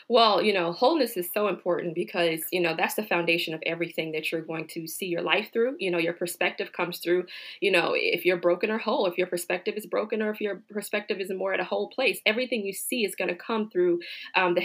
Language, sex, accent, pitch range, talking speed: English, female, American, 180-220 Hz, 250 wpm